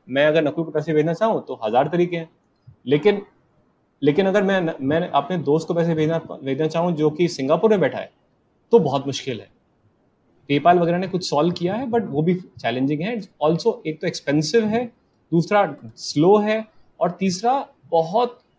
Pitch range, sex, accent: 145-205 Hz, male, Indian